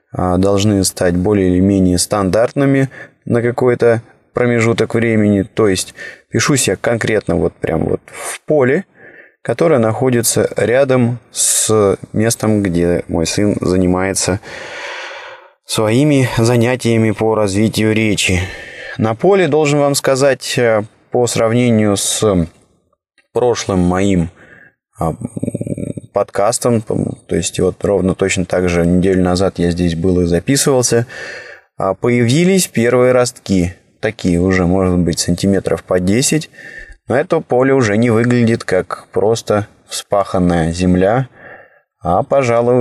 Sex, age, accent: male, 20-39, native